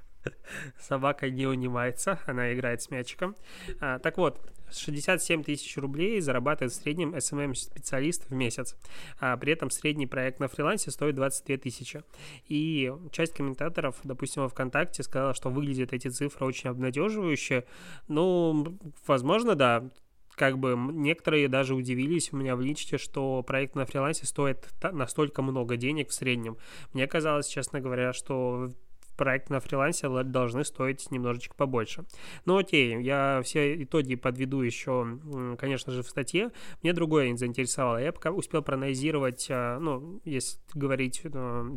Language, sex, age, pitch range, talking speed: Russian, male, 20-39, 125-150 Hz, 140 wpm